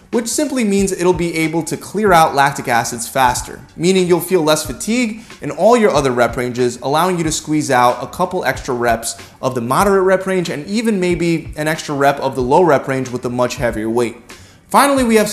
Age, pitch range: 20-39, 130-195 Hz